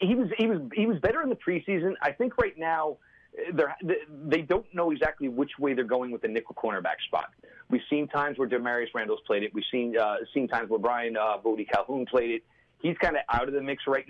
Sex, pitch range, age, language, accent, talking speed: male, 130-185 Hz, 30-49, English, American, 240 wpm